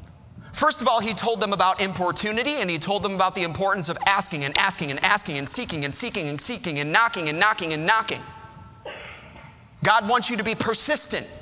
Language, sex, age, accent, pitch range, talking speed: English, male, 30-49, American, 155-225 Hz, 205 wpm